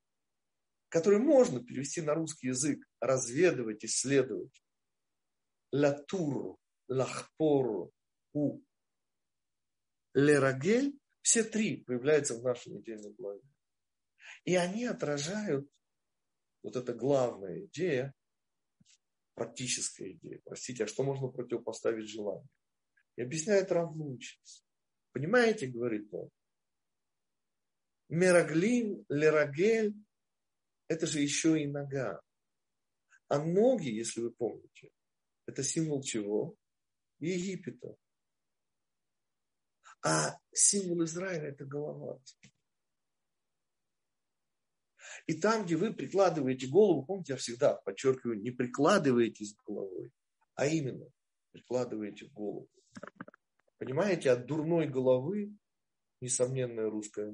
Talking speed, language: 90 wpm, Russian